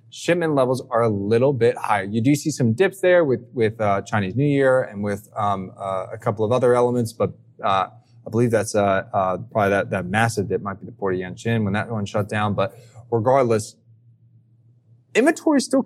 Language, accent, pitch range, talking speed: English, American, 105-130 Hz, 215 wpm